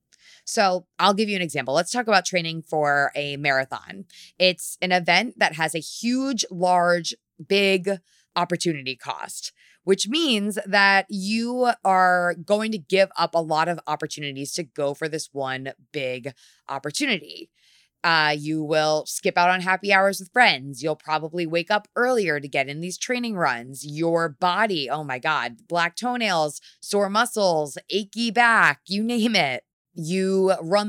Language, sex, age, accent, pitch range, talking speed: English, female, 20-39, American, 155-210 Hz, 155 wpm